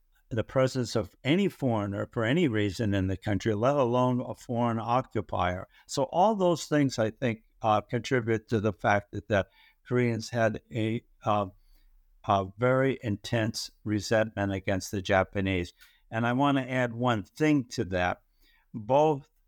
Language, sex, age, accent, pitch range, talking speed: English, male, 60-79, American, 100-125 Hz, 150 wpm